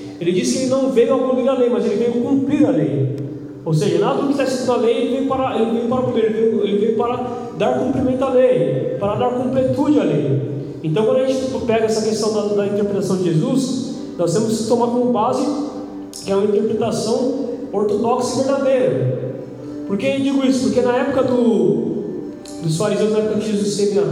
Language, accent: Portuguese, Brazilian